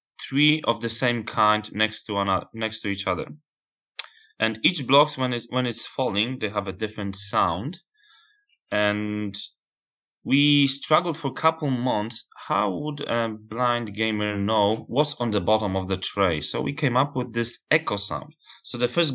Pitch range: 105-130 Hz